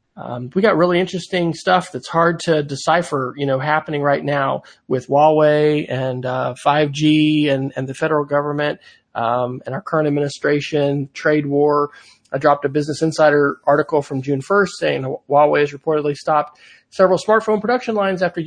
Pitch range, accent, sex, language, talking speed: 140-165 Hz, American, male, English, 165 wpm